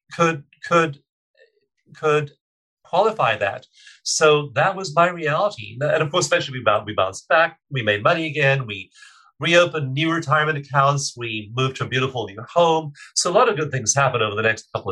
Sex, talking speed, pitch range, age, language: male, 185 wpm, 130-165 Hz, 40-59, English